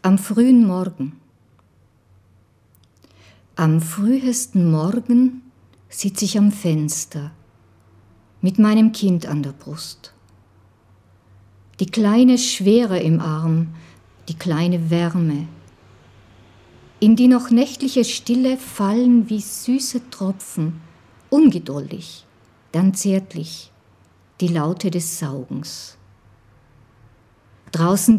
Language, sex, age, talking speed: German, female, 50-69, 85 wpm